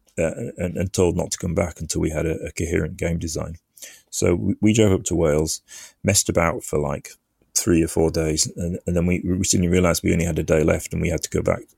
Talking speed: 255 wpm